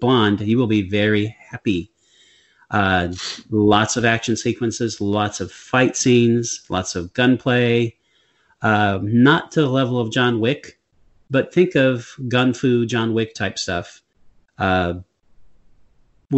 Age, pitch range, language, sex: 30-49, 100-125 Hz, English, male